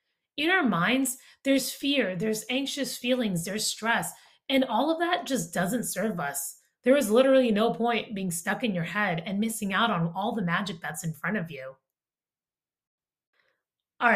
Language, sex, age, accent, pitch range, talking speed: English, female, 30-49, American, 180-265 Hz, 175 wpm